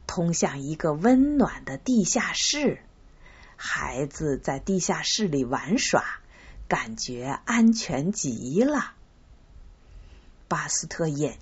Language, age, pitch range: Chinese, 50-69, 145-220 Hz